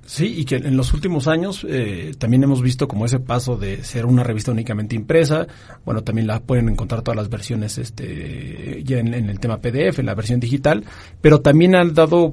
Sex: male